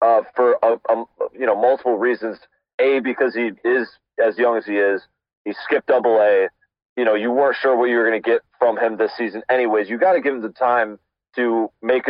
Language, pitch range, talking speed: English, 110-160 Hz, 225 wpm